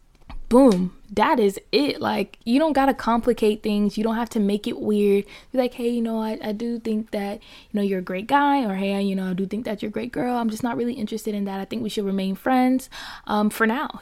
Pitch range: 195-230 Hz